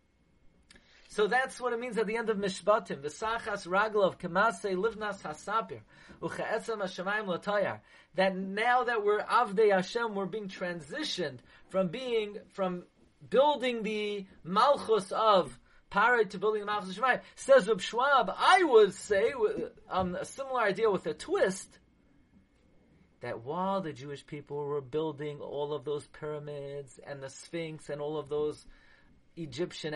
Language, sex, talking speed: English, male, 130 wpm